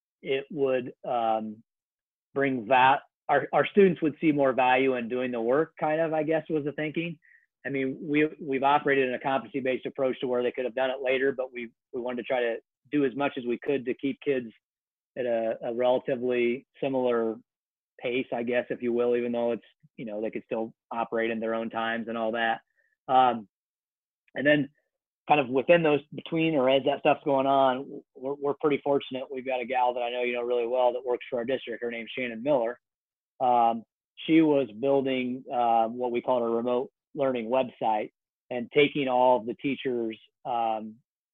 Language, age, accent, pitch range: English, 30-49, American, 120-140 Hz